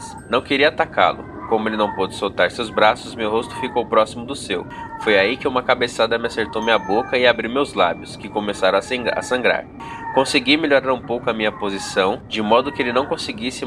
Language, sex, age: Portuguese, male, 20-39